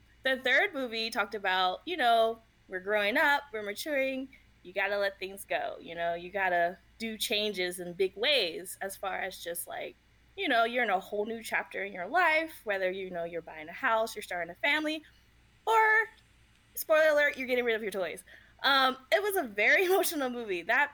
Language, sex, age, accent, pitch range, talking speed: English, female, 20-39, American, 210-305 Hz, 200 wpm